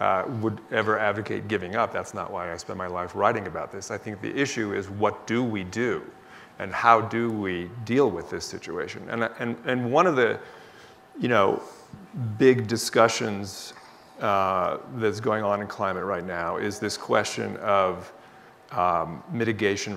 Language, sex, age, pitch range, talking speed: English, male, 40-59, 100-120 Hz, 170 wpm